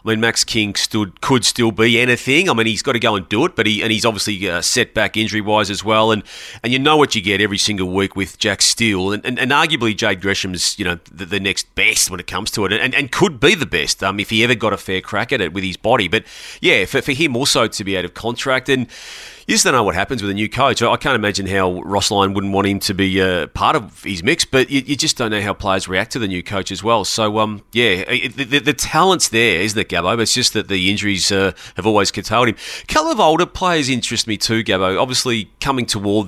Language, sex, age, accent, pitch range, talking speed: English, male, 30-49, Australian, 100-125 Hz, 275 wpm